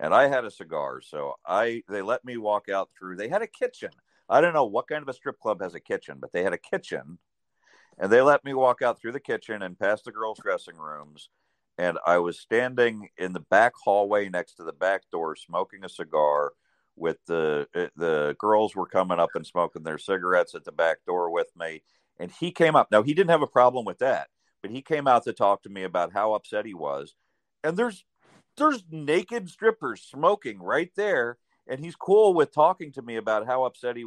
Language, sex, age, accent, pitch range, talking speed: English, male, 50-69, American, 95-155 Hz, 220 wpm